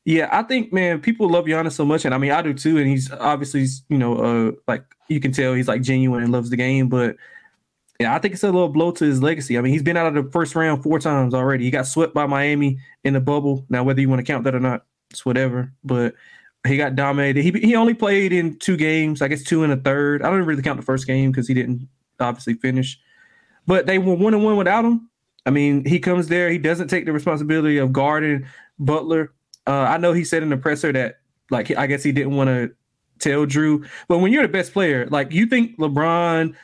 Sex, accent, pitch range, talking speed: male, American, 135-165 Hz, 250 wpm